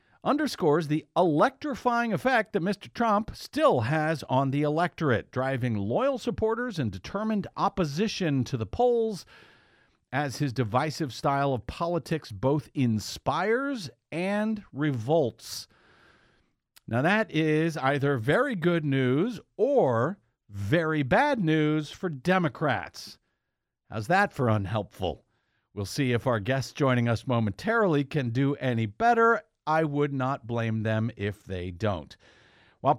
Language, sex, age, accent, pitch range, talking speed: English, male, 50-69, American, 125-180 Hz, 125 wpm